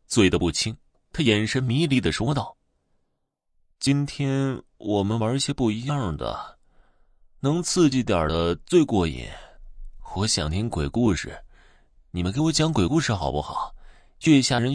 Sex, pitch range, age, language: male, 80-125 Hz, 20-39, Chinese